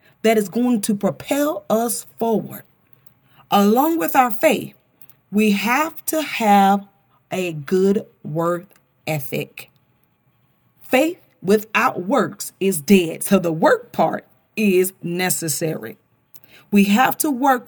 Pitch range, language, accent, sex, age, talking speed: 190-265 Hz, English, American, female, 40-59, 115 wpm